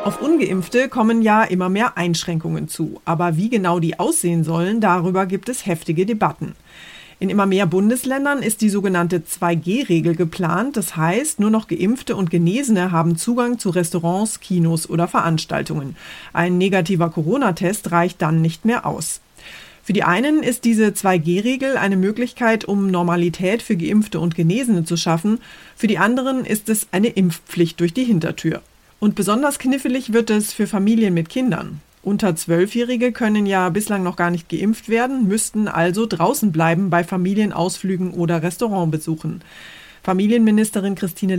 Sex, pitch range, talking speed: female, 175-225 Hz, 150 wpm